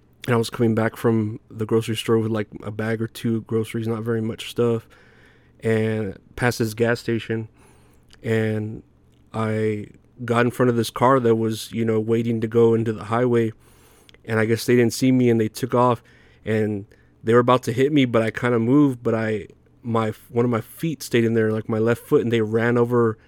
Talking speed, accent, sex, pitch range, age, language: 215 wpm, American, male, 110-120 Hz, 30-49, English